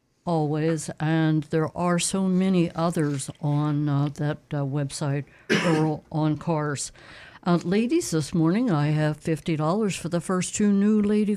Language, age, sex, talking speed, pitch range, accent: English, 60-79, female, 150 wpm, 150-185 Hz, American